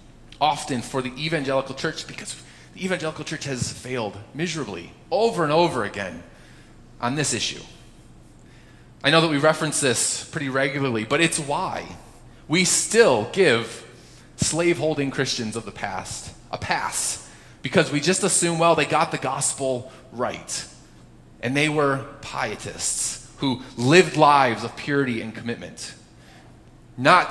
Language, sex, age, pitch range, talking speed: English, male, 30-49, 130-180 Hz, 135 wpm